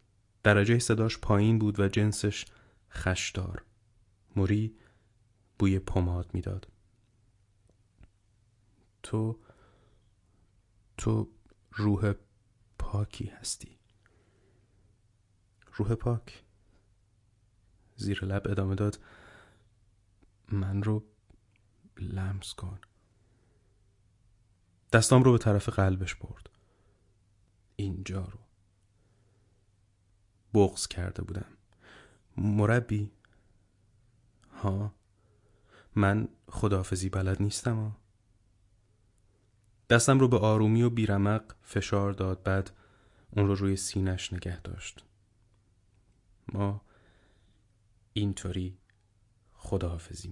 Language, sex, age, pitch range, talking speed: Persian, male, 30-49, 100-110 Hz, 75 wpm